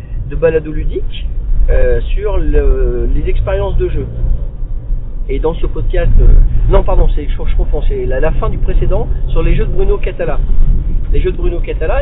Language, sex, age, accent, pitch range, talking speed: French, male, 40-59, French, 85-125 Hz, 185 wpm